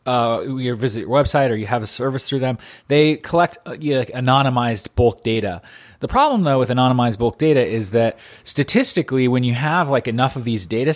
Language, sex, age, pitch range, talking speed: English, male, 30-49, 110-135 Hz, 220 wpm